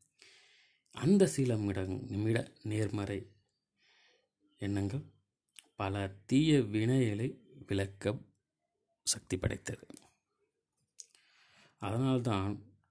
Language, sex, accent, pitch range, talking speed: Tamil, male, native, 105-155 Hz, 55 wpm